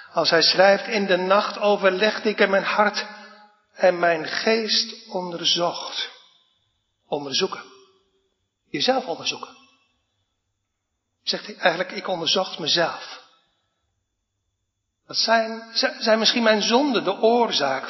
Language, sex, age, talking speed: Dutch, male, 60-79, 105 wpm